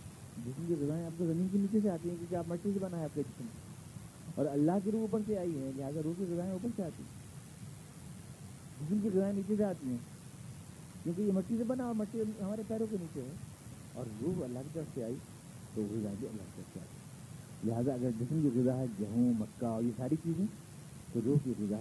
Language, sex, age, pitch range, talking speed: Urdu, male, 50-69, 135-185 Hz, 215 wpm